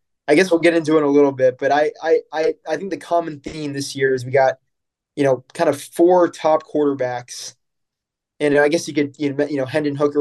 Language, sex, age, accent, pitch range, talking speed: English, male, 20-39, American, 130-150 Hz, 240 wpm